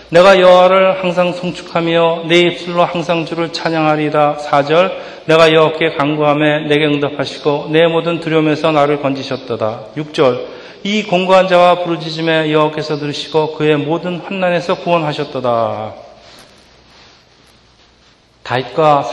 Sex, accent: male, native